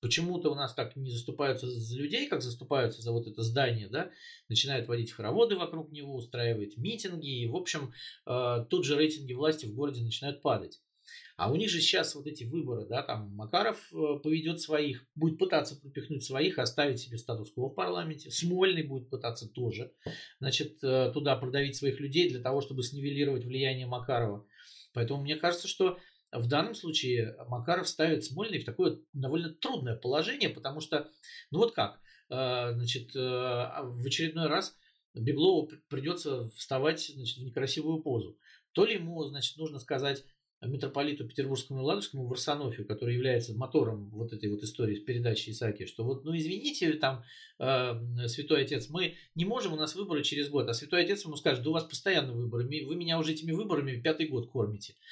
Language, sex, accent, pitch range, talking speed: Russian, male, native, 120-160 Hz, 170 wpm